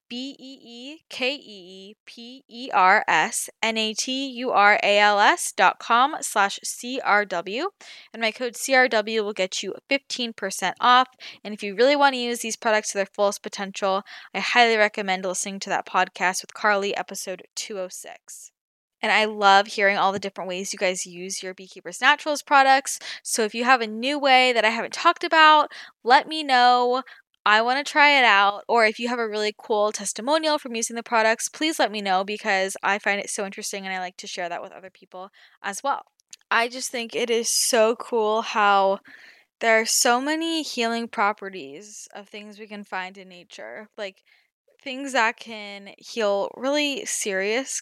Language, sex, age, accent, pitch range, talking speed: English, female, 10-29, American, 200-255 Hz, 170 wpm